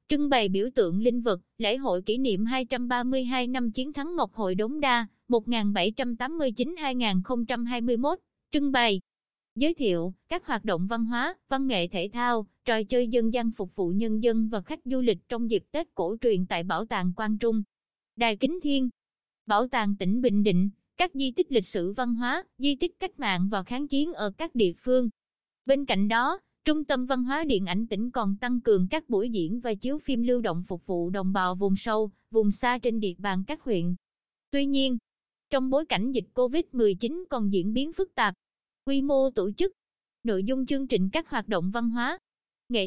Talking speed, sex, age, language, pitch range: 195 wpm, female, 20-39, Vietnamese, 210-270 Hz